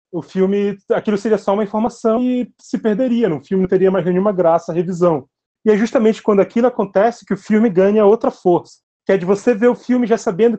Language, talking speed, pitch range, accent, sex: Portuguese, 225 wpm, 155-205 Hz, Brazilian, male